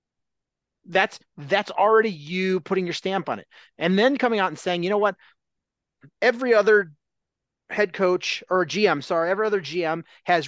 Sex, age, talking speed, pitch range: male, 30-49, 165 wpm, 155-205 Hz